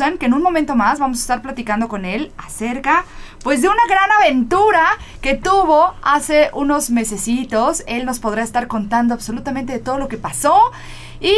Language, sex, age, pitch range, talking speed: Spanish, female, 30-49, 230-310 Hz, 180 wpm